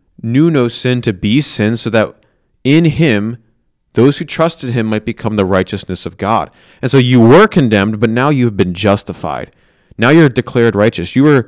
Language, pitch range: English, 105-130 Hz